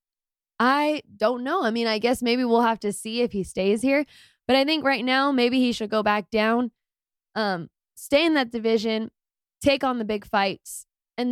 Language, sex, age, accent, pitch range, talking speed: English, female, 20-39, American, 210-265 Hz, 200 wpm